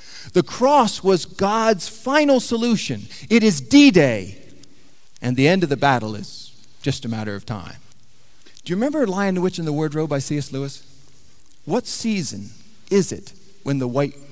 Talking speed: 170 wpm